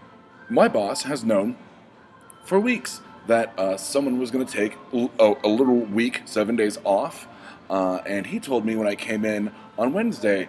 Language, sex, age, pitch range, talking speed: English, male, 30-49, 100-140 Hz, 175 wpm